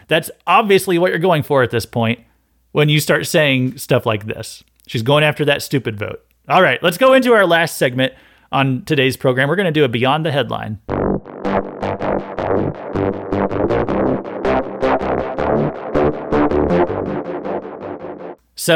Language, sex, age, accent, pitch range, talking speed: English, male, 30-49, American, 115-150 Hz, 135 wpm